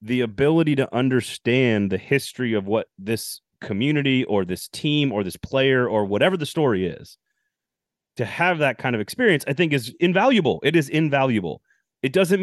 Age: 30-49